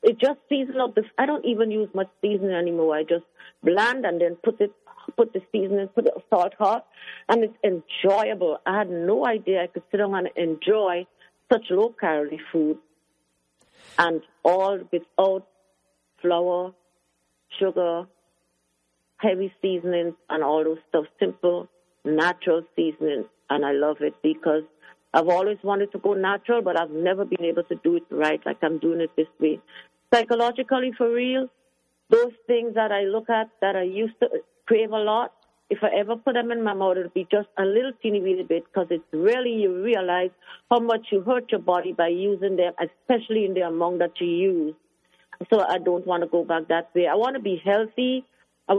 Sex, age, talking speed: female, 50-69, 185 wpm